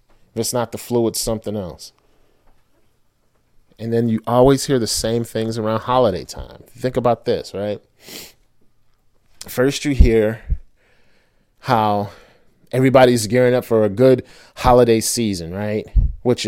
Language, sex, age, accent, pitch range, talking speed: English, male, 30-49, American, 100-125 Hz, 135 wpm